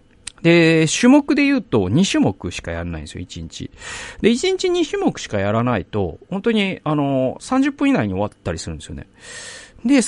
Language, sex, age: Japanese, male, 40-59